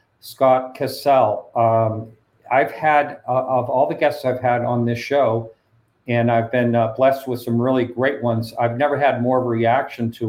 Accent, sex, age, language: American, male, 50-69, English